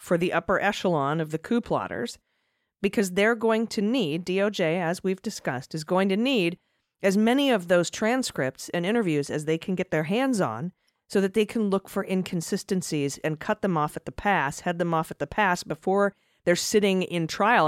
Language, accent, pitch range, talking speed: English, American, 155-200 Hz, 205 wpm